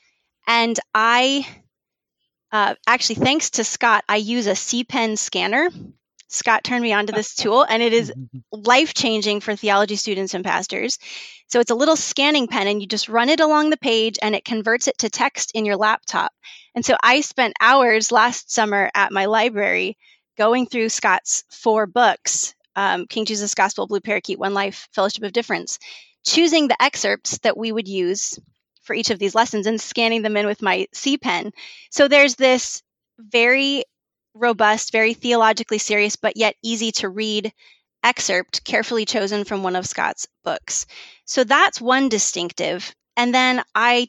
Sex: female